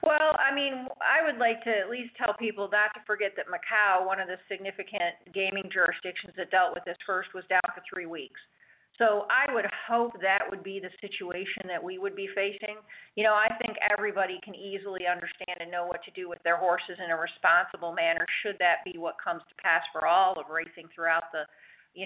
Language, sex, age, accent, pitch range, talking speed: English, female, 50-69, American, 180-210 Hz, 220 wpm